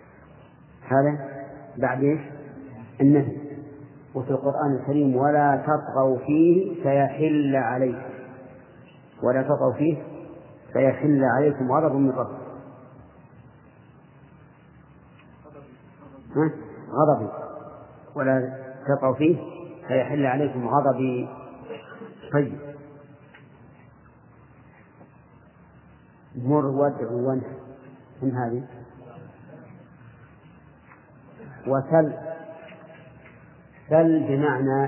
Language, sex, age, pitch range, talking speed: Arabic, male, 50-69, 130-150 Hz, 60 wpm